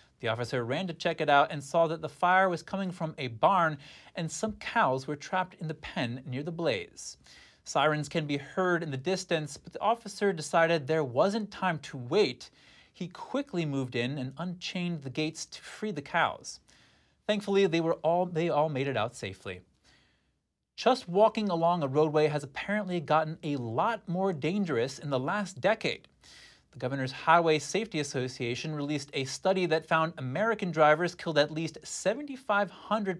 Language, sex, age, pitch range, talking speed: English, male, 30-49, 140-185 Hz, 175 wpm